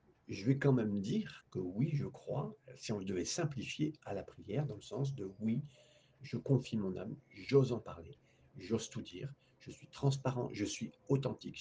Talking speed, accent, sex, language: 190 wpm, French, male, French